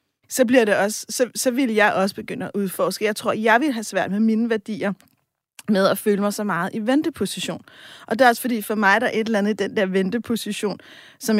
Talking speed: 250 wpm